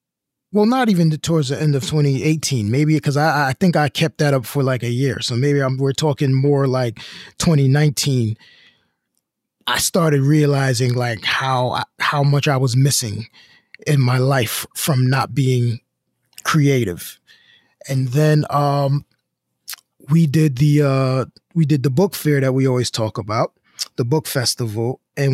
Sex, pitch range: male, 130-155 Hz